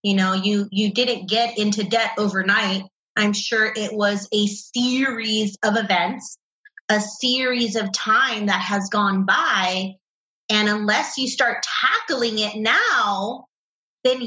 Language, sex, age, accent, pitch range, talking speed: English, female, 30-49, American, 215-270 Hz, 140 wpm